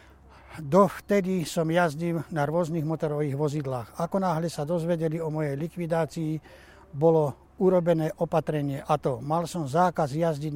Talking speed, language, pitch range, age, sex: 130 wpm, Slovak, 140-165 Hz, 60-79, male